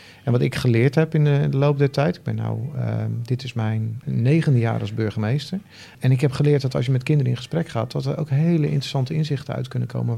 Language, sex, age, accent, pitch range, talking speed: Dutch, male, 40-59, Dutch, 115-140 Hz, 250 wpm